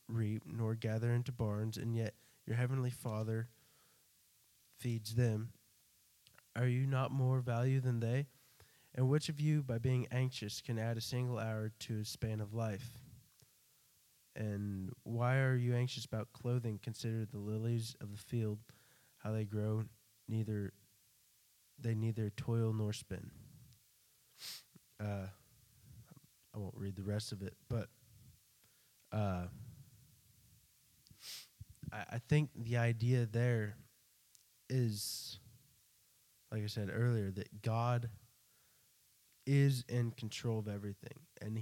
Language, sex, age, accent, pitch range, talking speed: English, male, 20-39, American, 105-125 Hz, 125 wpm